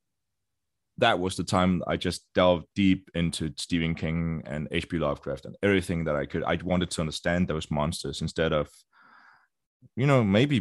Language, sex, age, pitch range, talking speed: English, male, 20-39, 85-100 Hz, 170 wpm